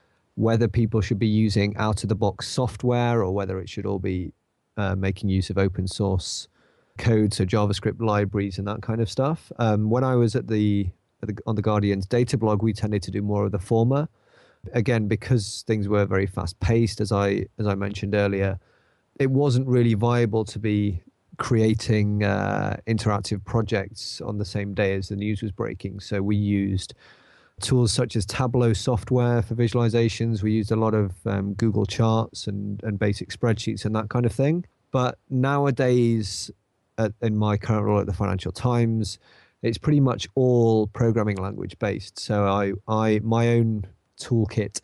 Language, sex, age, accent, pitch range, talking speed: English, male, 30-49, British, 100-115 Hz, 175 wpm